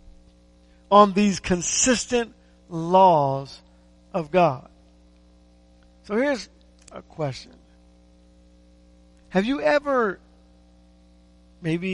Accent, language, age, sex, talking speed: American, English, 50-69, male, 70 wpm